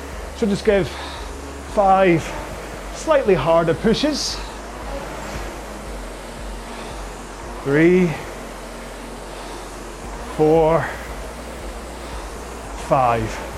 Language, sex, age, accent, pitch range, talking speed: English, male, 30-49, British, 145-190 Hz, 45 wpm